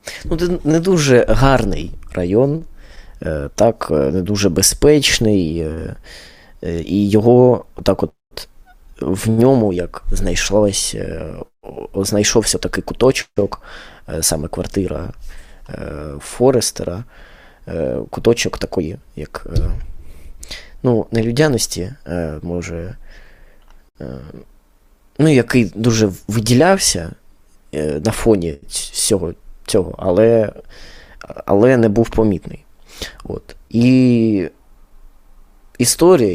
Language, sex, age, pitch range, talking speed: Ukrainian, male, 20-39, 85-115 Hz, 70 wpm